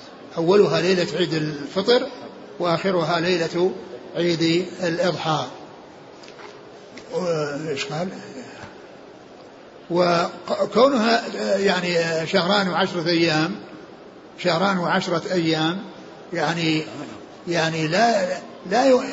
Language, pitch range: Arabic, 165-200 Hz